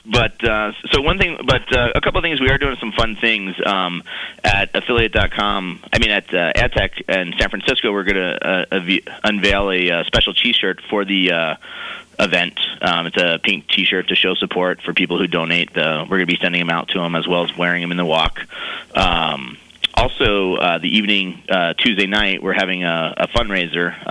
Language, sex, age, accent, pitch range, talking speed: English, male, 30-49, American, 85-95 Hz, 215 wpm